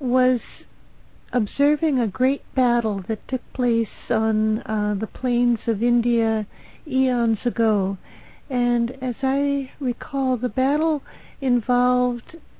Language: English